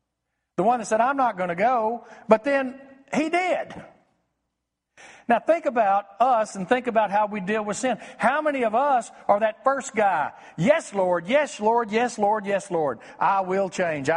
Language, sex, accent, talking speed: English, male, American, 190 wpm